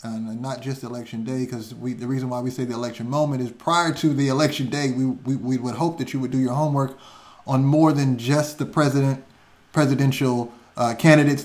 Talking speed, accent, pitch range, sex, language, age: 210 wpm, American, 120-140 Hz, male, English, 30-49